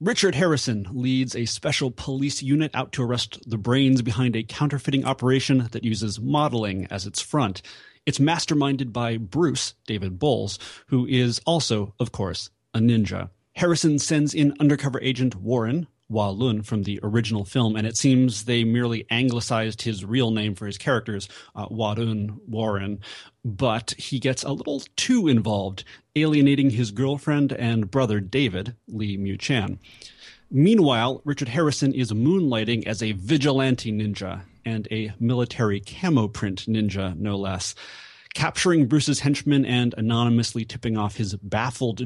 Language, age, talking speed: English, 30-49, 145 wpm